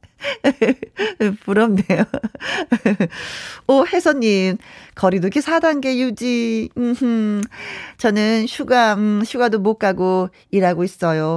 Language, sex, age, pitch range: Korean, female, 40-59, 185-245 Hz